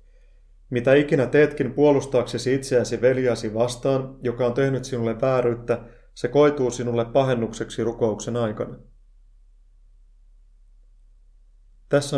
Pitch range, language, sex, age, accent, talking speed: 105-125 Hz, Finnish, male, 30-49, native, 95 wpm